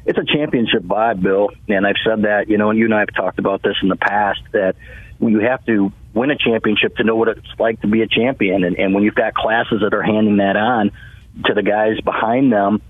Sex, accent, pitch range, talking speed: male, American, 100-110 Hz, 255 wpm